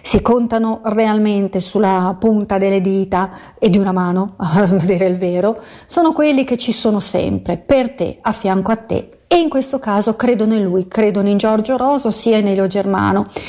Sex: female